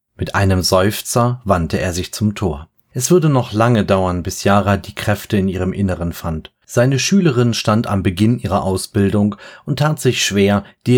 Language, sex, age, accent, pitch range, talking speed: German, male, 30-49, German, 95-120 Hz, 180 wpm